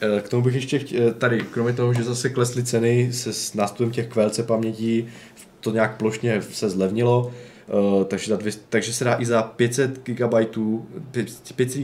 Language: Czech